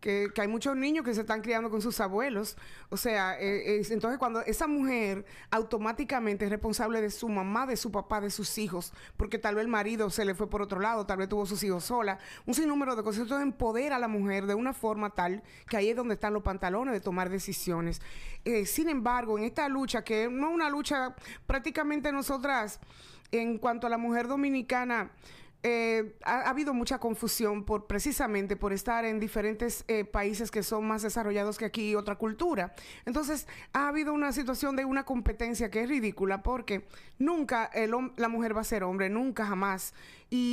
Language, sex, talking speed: Spanish, female, 205 wpm